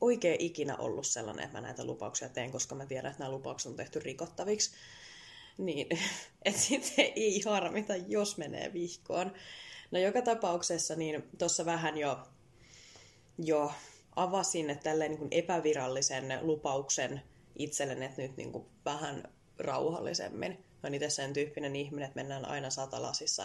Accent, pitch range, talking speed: native, 140-175 Hz, 140 wpm